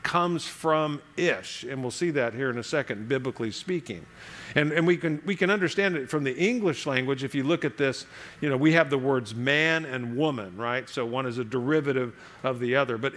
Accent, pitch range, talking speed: American, 135-175 Hz, 225 wpm